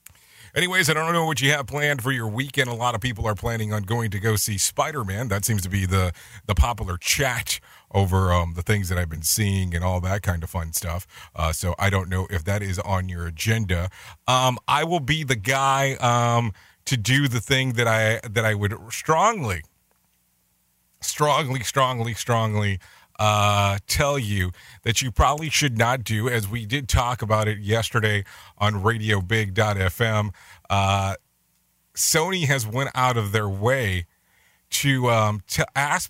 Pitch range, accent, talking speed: 95-125 Hz, American, 175 wpm